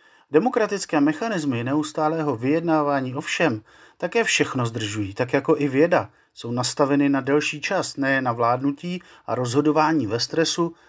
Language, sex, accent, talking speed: Czech, male, native, 130 wpm